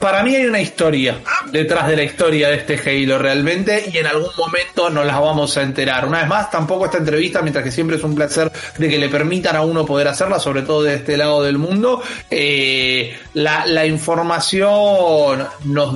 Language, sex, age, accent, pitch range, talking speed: Spanish, male, 30-49, Argentinian, 145-190 Hz, 205 wpm